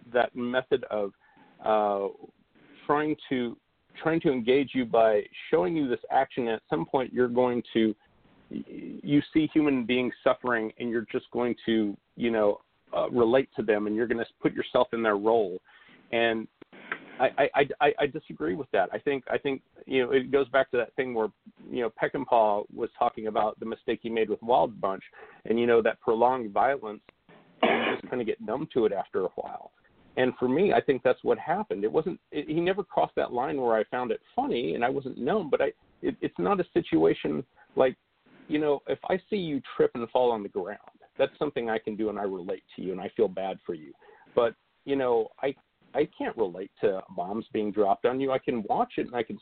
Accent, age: American, 40-59